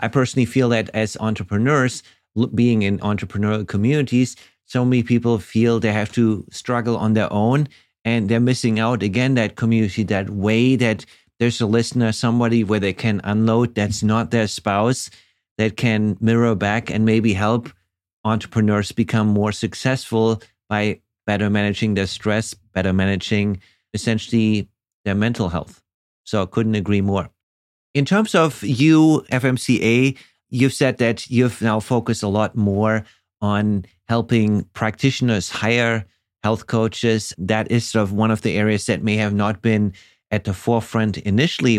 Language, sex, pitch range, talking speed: English, male, 105-120 Hz, 155 wpm